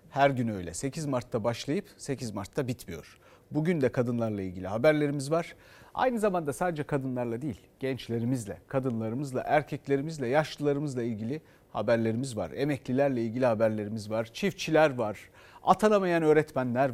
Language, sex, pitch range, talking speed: Turkish, male, 120-175 Hz, 125 wpm